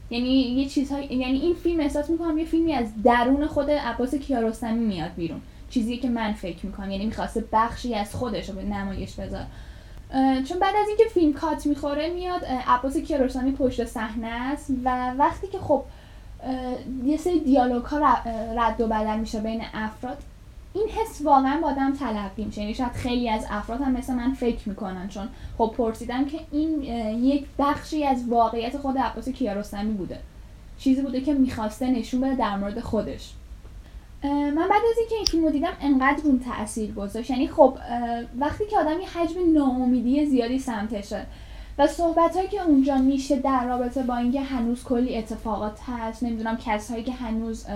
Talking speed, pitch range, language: 170 wpm, 230-290 Hz, Persian